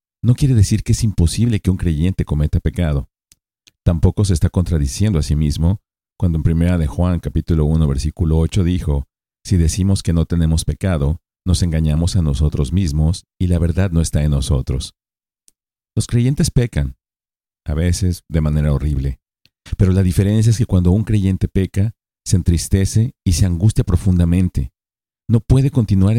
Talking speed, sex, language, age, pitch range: 165 wpm, male, Spanish, 50-69, 80-100 Hz